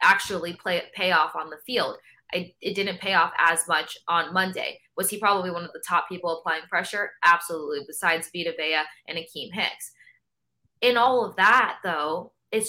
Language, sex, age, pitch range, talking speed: English, female, 20-39, 170-210 Hz, 190 wpm